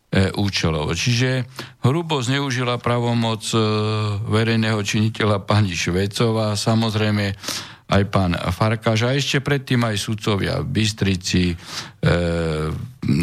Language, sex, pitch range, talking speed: Slovak, male, 105-125 Hz, 100 wpm